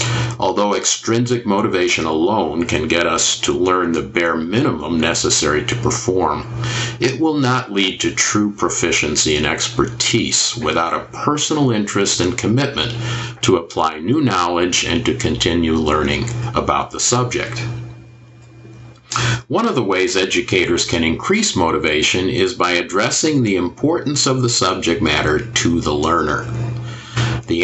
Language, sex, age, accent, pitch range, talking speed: English, male, 50-69, American, 110-125 Hz, 135 wpm